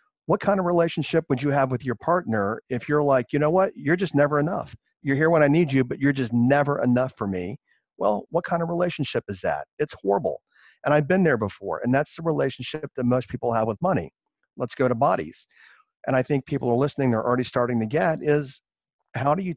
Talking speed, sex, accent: 235 wpm, male, American